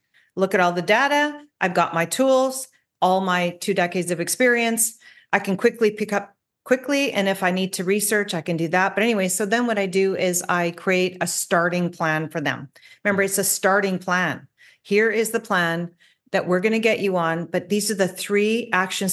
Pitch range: 180-230 Hz